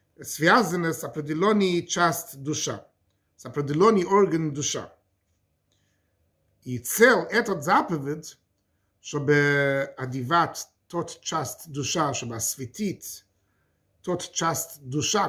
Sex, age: male, 50-69